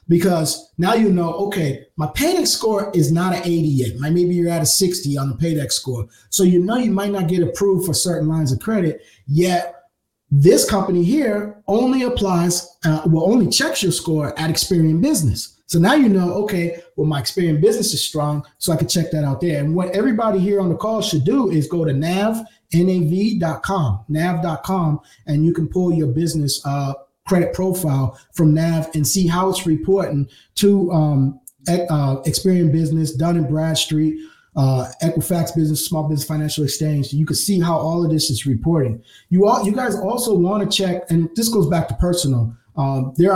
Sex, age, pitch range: male, 30-49, 150-185 Hz